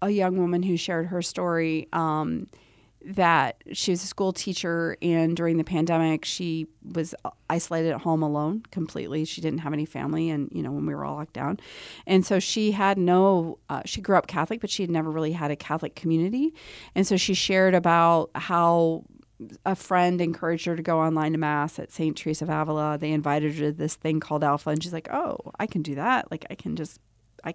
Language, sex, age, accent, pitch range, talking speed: English, female, 40-59, American, 155-185 Hz, 215 wpm